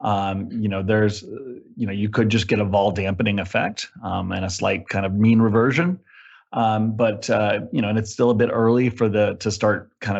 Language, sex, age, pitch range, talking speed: English, male, 30-49, 100-110 Hz, 225 wpm